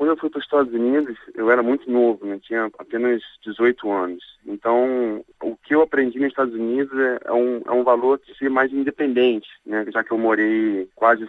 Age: 20-39